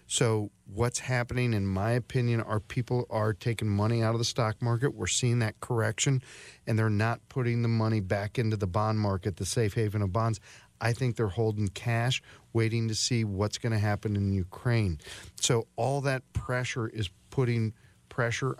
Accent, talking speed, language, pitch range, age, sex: American, 185 wpm, English, 100-115 Hz, 40-59, male